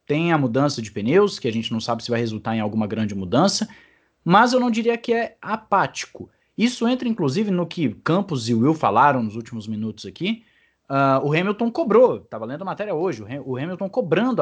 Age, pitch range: 20-39, 125-200 Hz